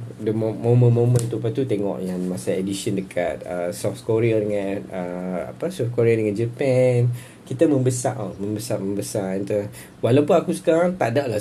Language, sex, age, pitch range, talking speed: Malay, male, 20-39, 110-135 Hz, 160 wpm